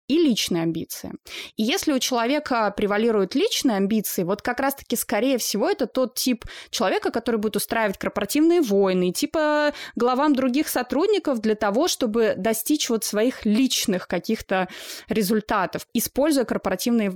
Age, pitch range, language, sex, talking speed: 20-39, 195-245 Hz, Russian, female, 135 wpm